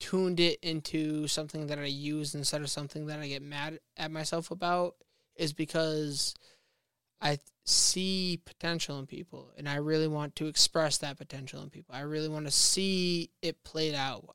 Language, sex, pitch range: English, male, 150-180 Hz